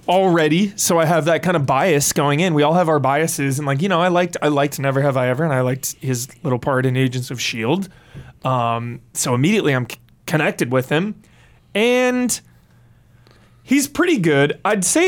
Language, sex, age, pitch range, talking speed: English, male, 20-39, 130-195 Hz, 200 wpm